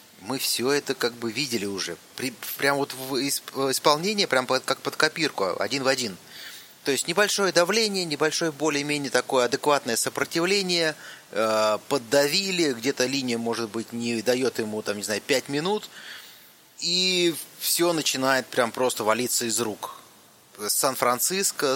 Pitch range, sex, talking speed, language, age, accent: 115-145 Hz, male, 135 wpm, Russian, 30-49, native